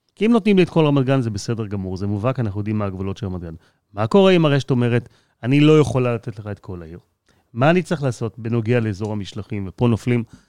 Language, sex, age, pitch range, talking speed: Hebrew, male, 30-49, 110-150 Hz, 235 wpm